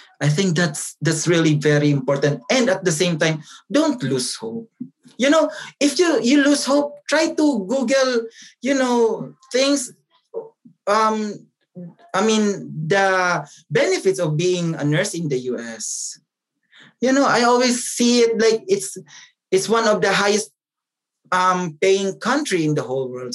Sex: male